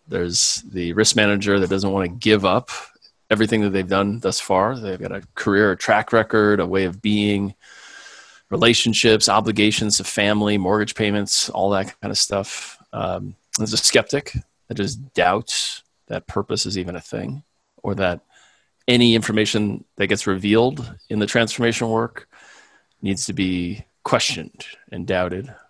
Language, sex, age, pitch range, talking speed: English, male, 30-49, 95-110 Hz, 160 wpm